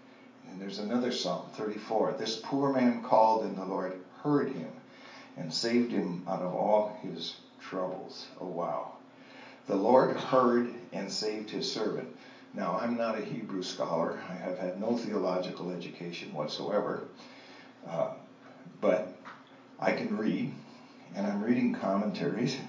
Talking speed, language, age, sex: 140 wpm, English, 60-79, male